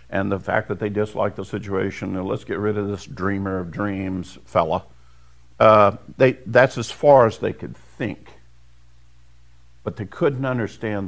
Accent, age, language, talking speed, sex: American, 50-69, English, 155 wpm, male